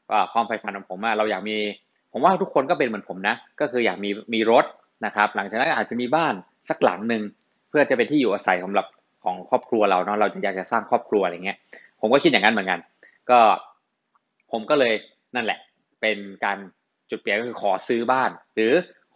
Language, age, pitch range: Thai, 20-39, 105-125 Hz